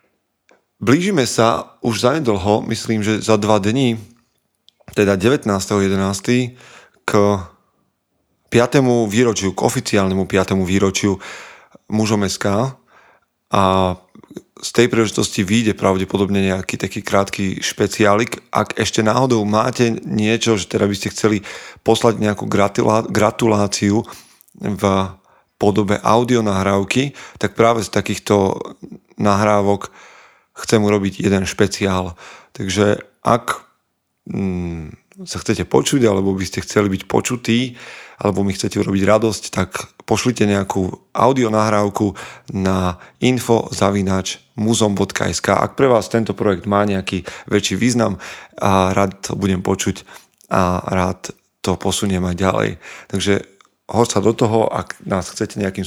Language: Slovak